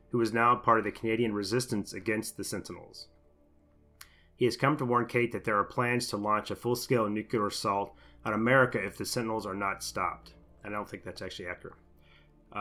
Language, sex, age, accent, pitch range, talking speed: English, male, 30-49, American, 95-115 Hz, 195 wpm